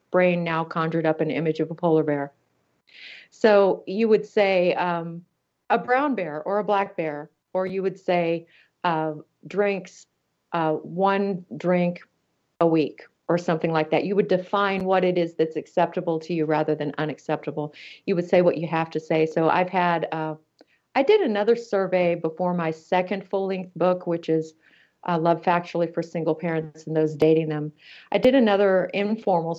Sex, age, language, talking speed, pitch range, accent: female, 40-59, English, 175 wpm, 160-190 Hz, American